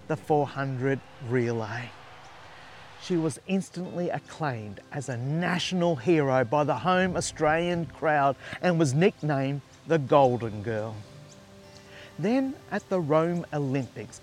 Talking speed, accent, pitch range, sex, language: 115 wpm, Australian, 130-170 Hz, male, English